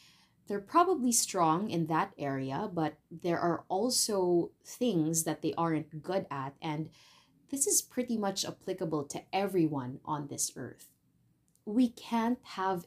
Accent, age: Filipino, 20-39